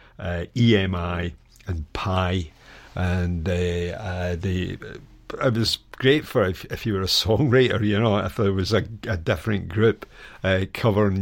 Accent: British